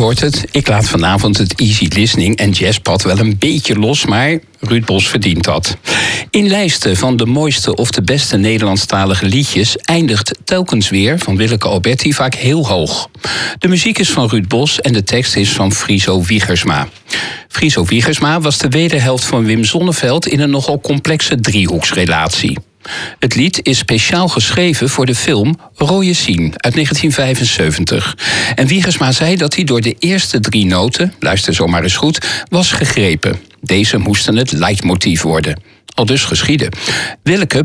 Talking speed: 160 wpm